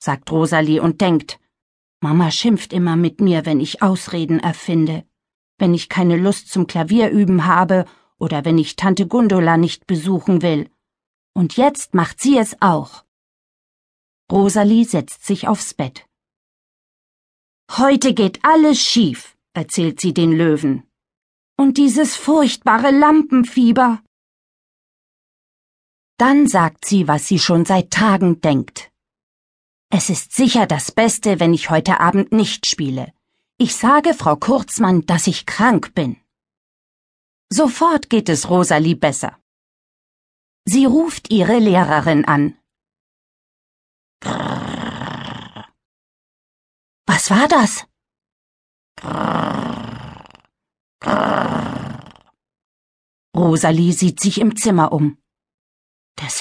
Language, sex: German, female